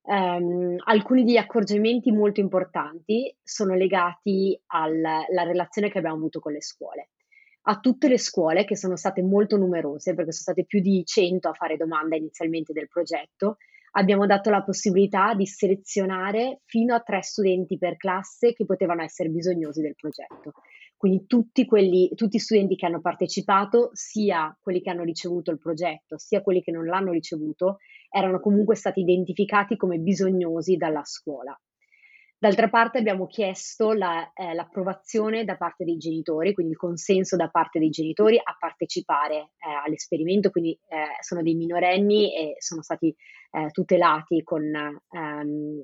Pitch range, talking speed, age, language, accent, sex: 165-205 Hz, 150 wpm, 30-49, Italian, native, female